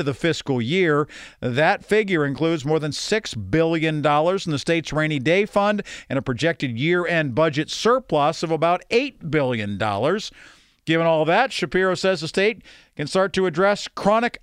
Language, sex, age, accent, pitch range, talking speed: English, male, 50-69, American, 140-180 Hz, 160 wpm